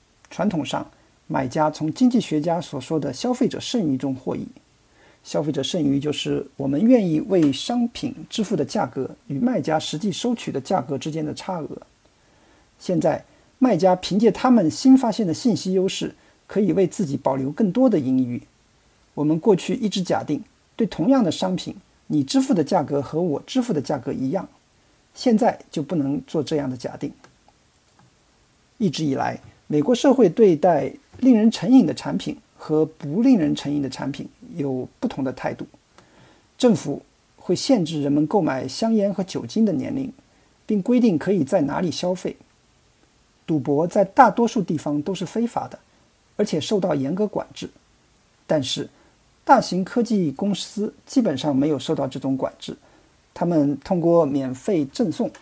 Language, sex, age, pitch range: Chinese, male, 50-69, 150-230 Hz